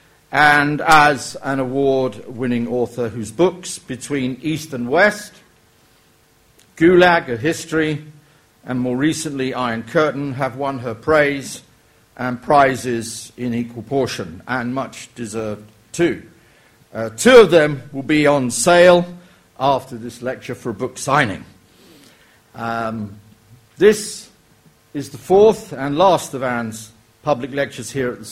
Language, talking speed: English, 130 wpm